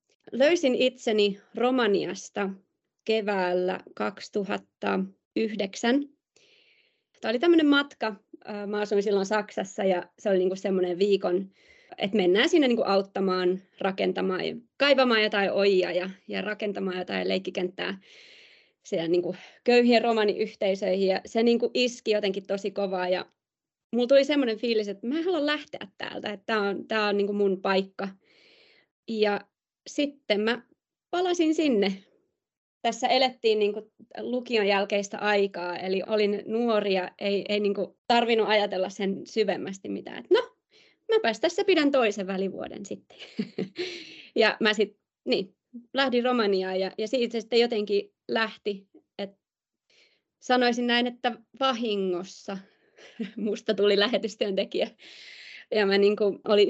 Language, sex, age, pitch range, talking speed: Finnish, female, 20-39, 195-245 Hz, 120 wpm